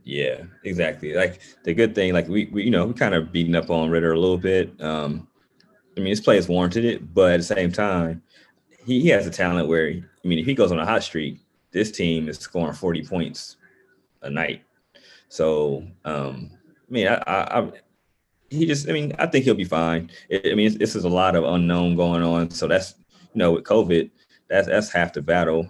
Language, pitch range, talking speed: English, 80-95 Hz, 220 wpm